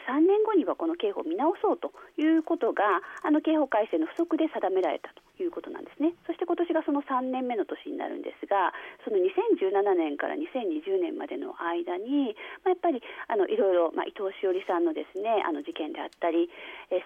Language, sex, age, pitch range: Japanese, female, 40-59, 295-390 Hz